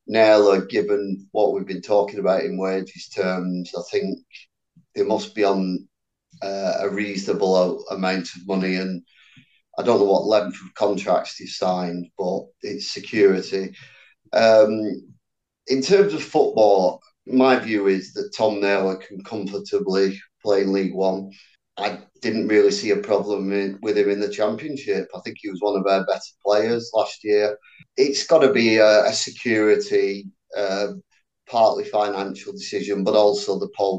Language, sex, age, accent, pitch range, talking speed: English, male, 30-49, British, 95-105 Hz, 155 wpm